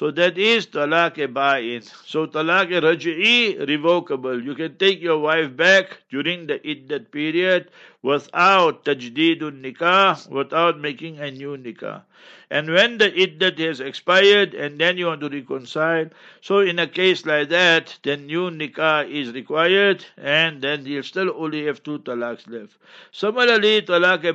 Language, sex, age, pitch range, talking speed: English, male, 60-79, 150-180 Hz, 150 wpm